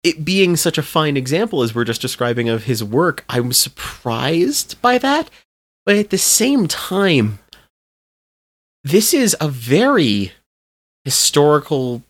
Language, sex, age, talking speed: English, male, 30-49, 135 wpm